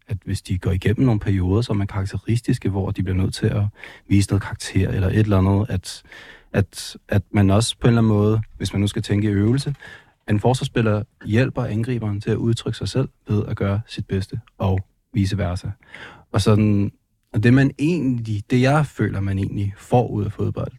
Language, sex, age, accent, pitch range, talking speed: Danish, male, 30-49, native, 100-115 Hz, 215 wpm